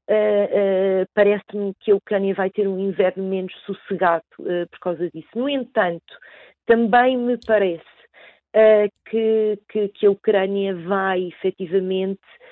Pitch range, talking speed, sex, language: 185-215 Hz, 135 wpm, female, Portuguese